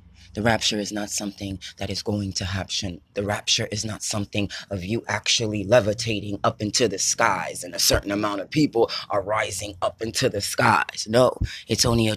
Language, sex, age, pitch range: English, female, 30-49, 100-120 Hz